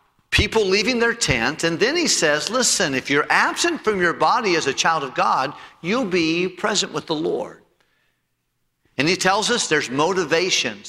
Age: 50-69